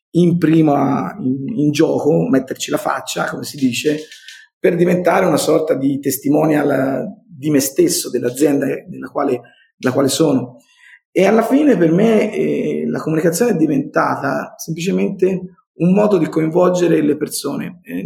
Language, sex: Italian, male